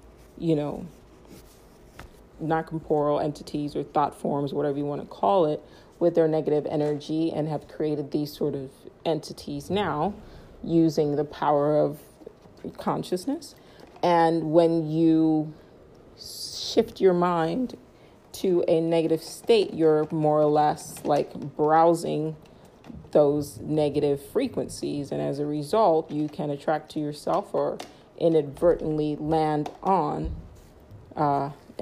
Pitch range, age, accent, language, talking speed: 145-165 Hz, 40-59, American, English, 120 wpm